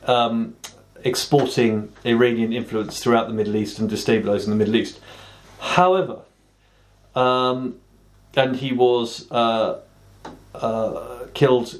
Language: English